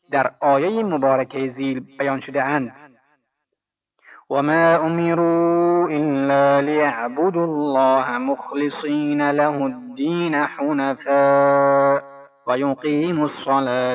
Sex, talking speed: male, 80 wpm